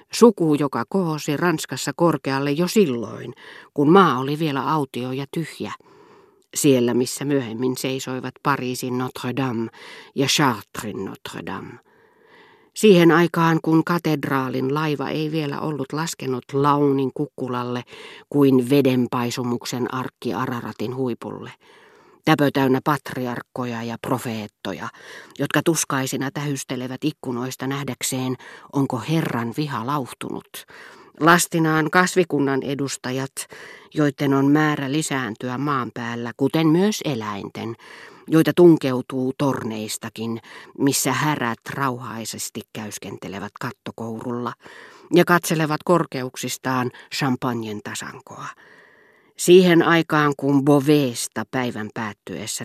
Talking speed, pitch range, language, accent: 95 wpm, 125-155 Hz, Finnish, native